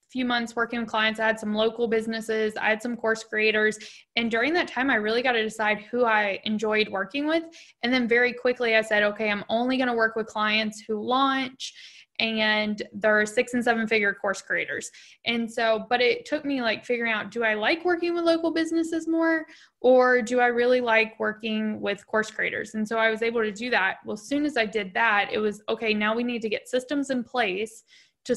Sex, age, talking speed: female, 10-29, 225 wpm